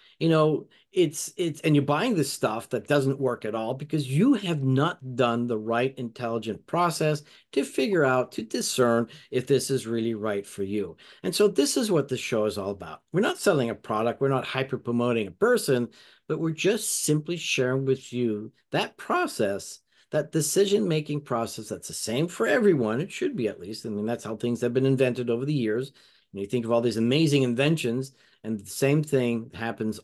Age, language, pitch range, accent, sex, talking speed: 50-69, English, 115-150 Hz, American, male, 200 wpm